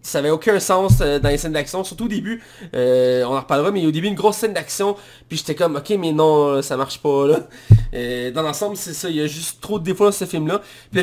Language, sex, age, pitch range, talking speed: French, male, 20-39, 135-205 Hz, 275 wpm